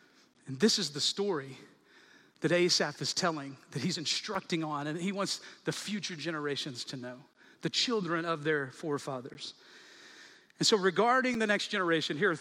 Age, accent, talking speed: 40-59, American, 165 wpm